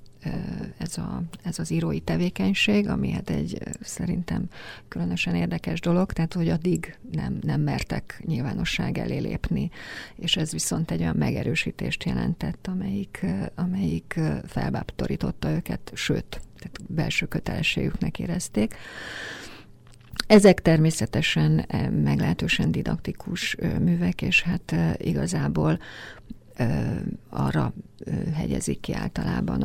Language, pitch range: Hungarian, 125-180 Hz